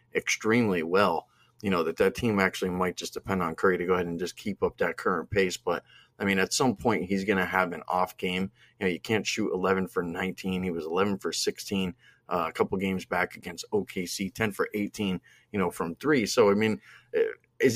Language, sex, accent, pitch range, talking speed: English, male, American, 95-115 Hz, 225 wpm